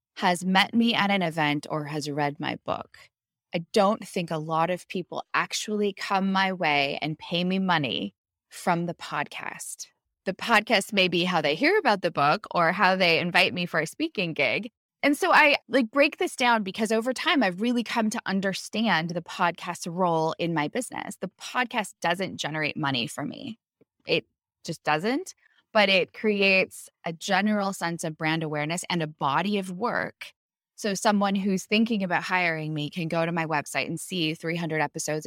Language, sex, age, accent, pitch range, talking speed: English, female, 20-39, American, 160-210 Hz, 185 wpm